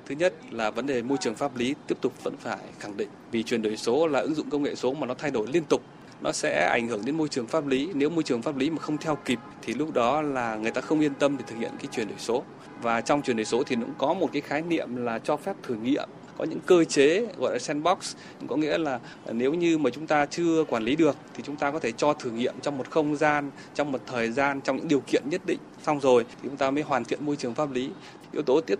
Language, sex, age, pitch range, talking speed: Vietnamese, male, 20-39, 120-150 Hz, 290 wpm